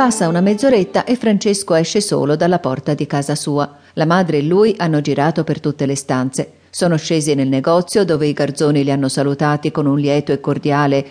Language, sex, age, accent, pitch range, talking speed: Italian, female, 40-59, native, 145-190 Hz, 200 wpm